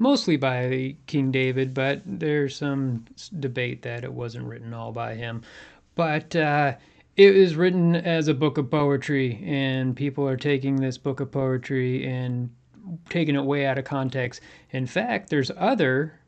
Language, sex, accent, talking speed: English, male, American, 160 wpm